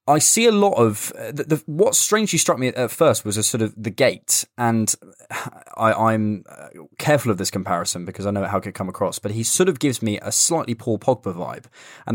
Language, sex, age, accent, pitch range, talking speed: English, male, 20-39, British, 95-115 Hz, 225 wpm